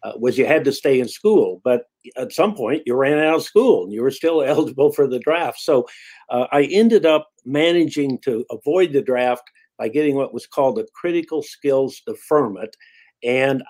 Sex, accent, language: male, American, English